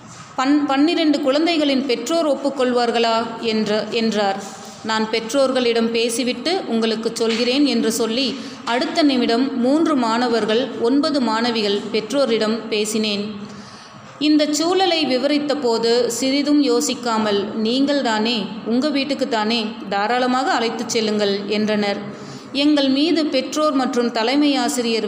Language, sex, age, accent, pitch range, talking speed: Tamil, female, 30-49, native, 215-260 Hz, 90 wpm